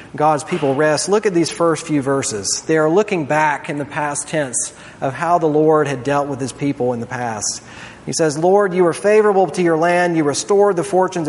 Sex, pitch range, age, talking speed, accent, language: male, 145-180 Hz, 40-59, 225 wpm, American, English